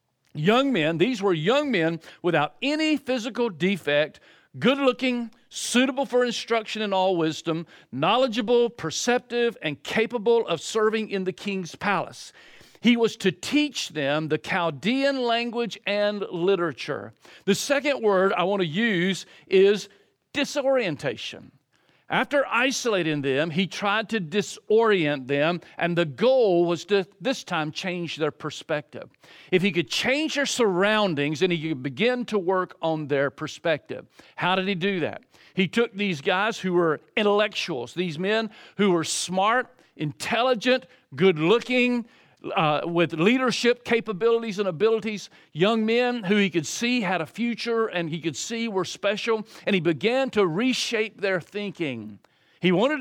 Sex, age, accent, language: male, 50-69, American, English